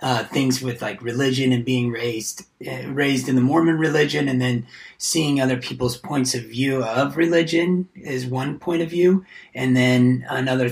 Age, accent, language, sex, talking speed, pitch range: 30-49, American, English, male, 180 wpm, 125-140 Hz